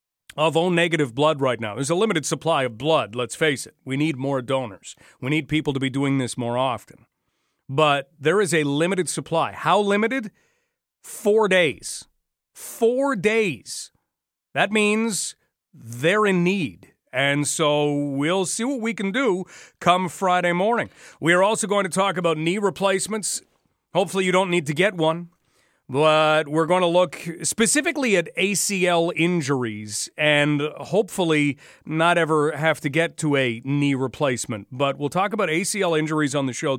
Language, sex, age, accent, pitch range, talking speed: English, male, 40-59, American, 145-185 Hz, 165 wpm